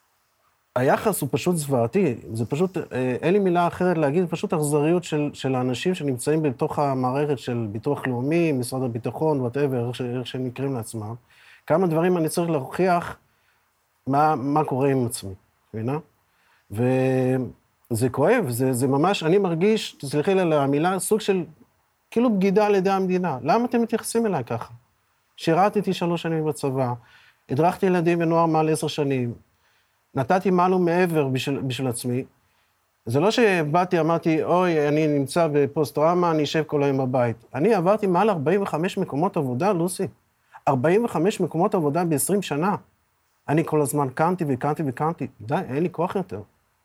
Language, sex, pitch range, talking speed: Hebrew, male, 130-180 Hz, 150 wpm